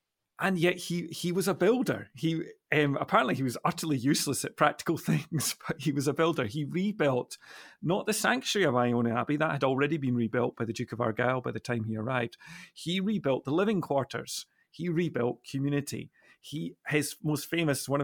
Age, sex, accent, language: 40-59, male, British, English